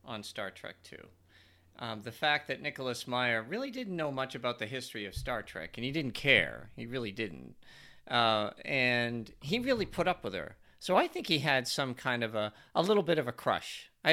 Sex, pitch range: male, 110-145 Hz